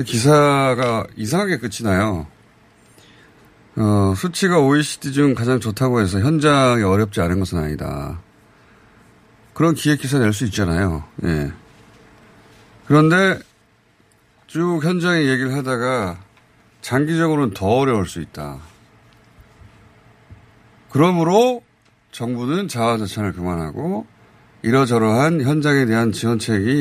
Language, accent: Korean, native